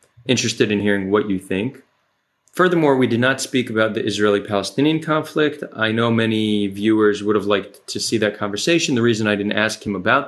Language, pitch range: English, 105-130 Hz